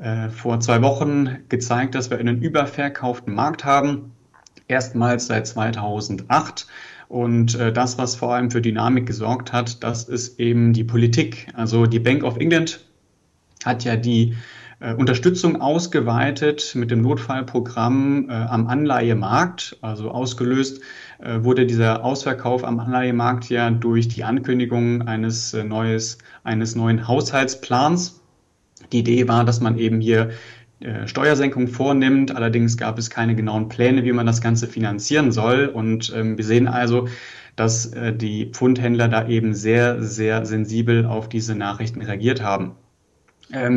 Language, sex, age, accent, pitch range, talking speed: German, male, 30-49, German, 115-130 Hz, 135 wpm